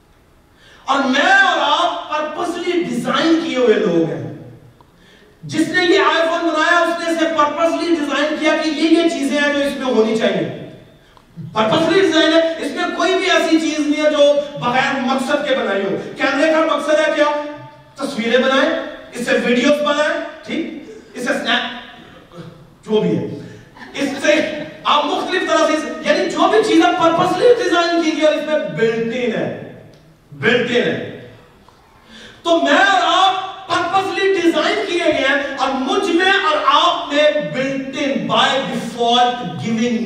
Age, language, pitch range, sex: 40-59, Urdu, 235-330 Hz, male